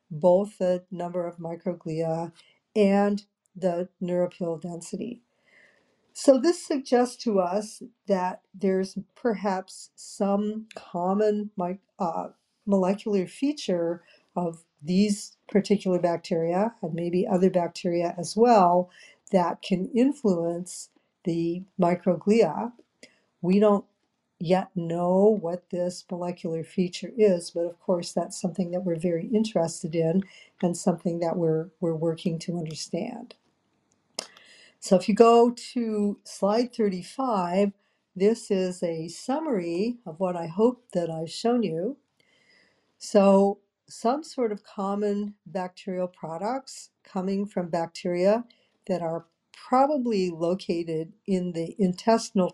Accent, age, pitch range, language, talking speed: American, 50-69, 175-210 Hz, English, 115 wpm